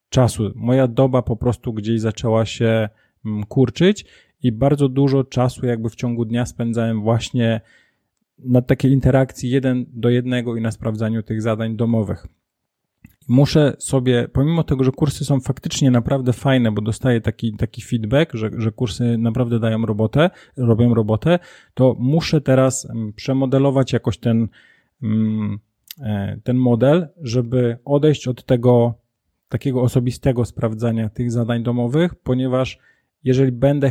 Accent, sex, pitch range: native, male, 115-140 Hz